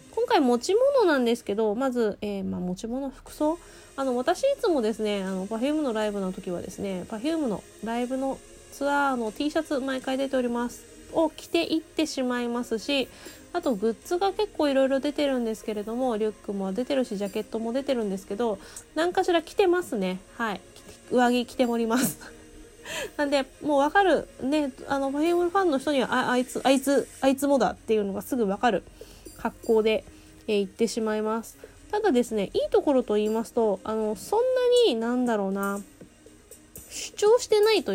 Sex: female